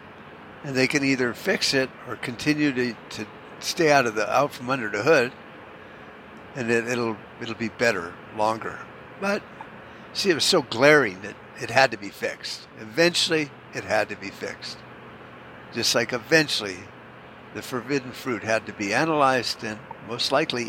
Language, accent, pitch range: English, American, 110-155 Hz